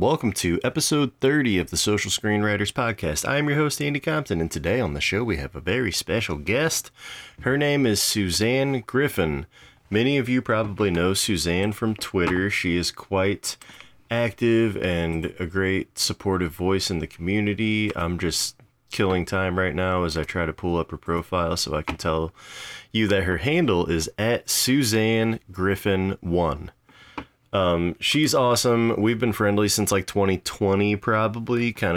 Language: English